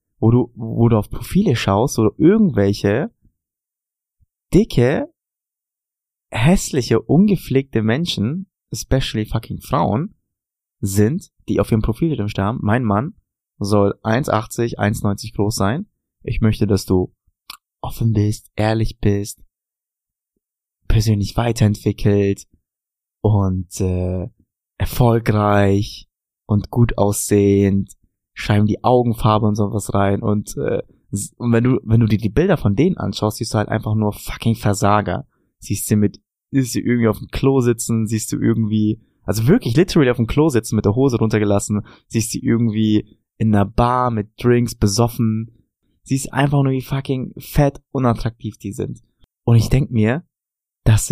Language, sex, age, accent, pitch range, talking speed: German, male, 20-39, German, 105-125 Hz, 140 wpm